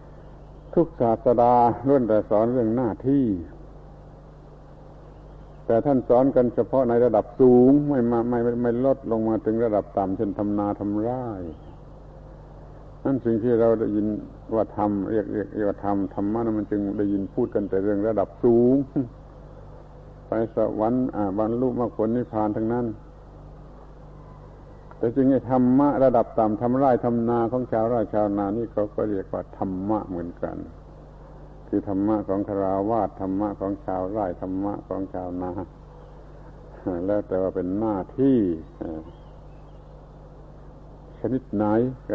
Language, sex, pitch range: Thai, male, 100-125 Hz